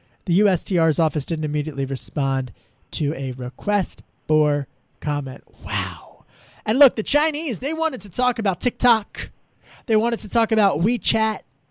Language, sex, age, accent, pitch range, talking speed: English, male, 20-39, American, 155-205 Hz, 145 wpm